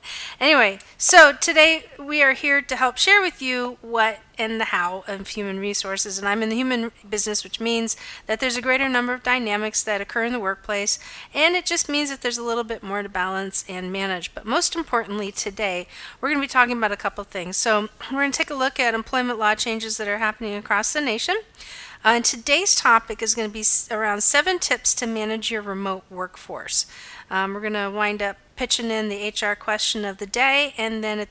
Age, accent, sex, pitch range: 40-59, American, female, 205-255 Hz